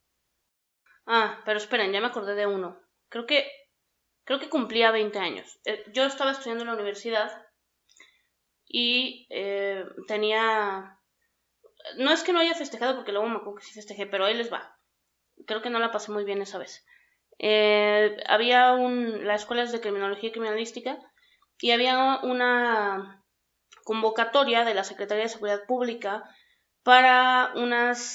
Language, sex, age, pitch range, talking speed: Spanish, female, 20-39, 210-250 Hz, 155 wpm